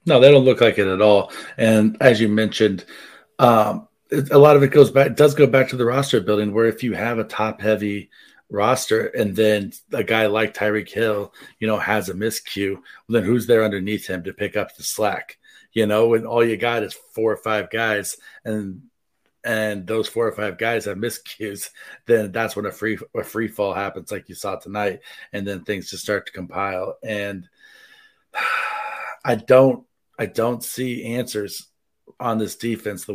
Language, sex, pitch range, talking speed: English, male, 105-120 Hz, 195 wpm